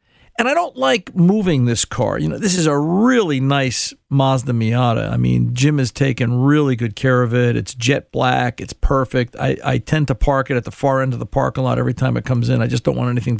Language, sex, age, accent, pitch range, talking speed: English, male, 50-69, American, 120-145 Hz, 245 wpm